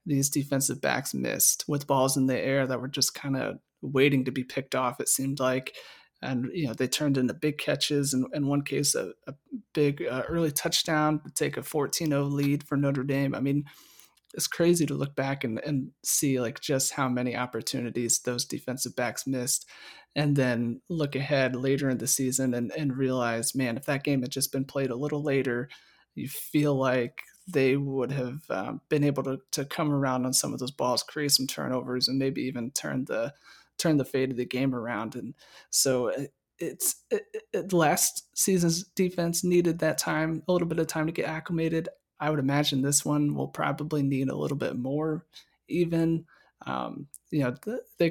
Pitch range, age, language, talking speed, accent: 130-155 Hz, 30-49, English, 200 wpm, American